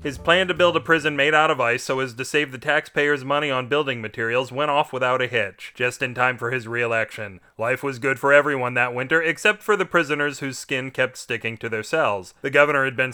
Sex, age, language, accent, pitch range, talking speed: male, 30-49, English, American, 120-150 Hz, 240 wpm